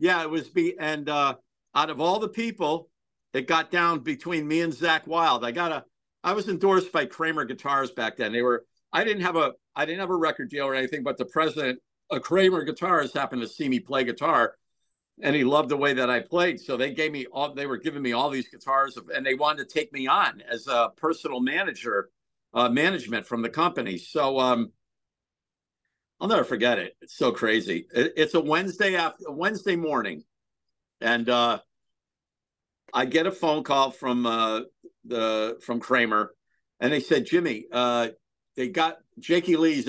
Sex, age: male, 50-69